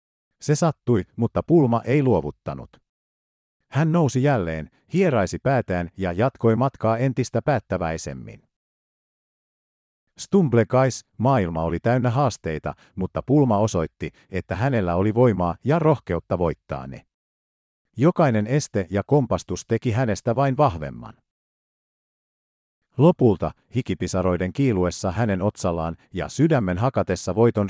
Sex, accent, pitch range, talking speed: male, native, 90-135 Hz, 105 wpm